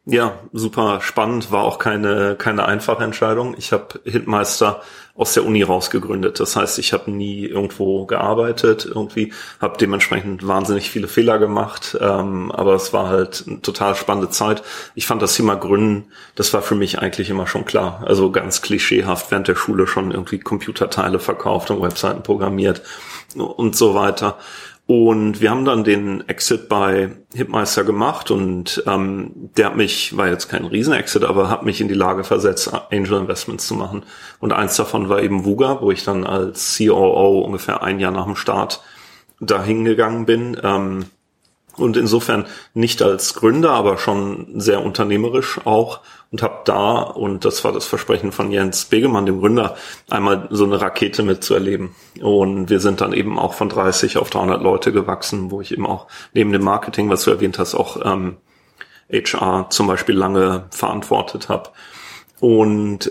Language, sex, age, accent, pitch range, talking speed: German, male, 40-59, German, 95-110 Hz, 170 wpm